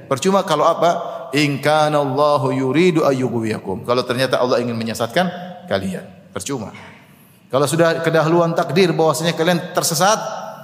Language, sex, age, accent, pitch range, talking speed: Indonesian, male, 30-49, native, 145-190 Hz, 105 wpm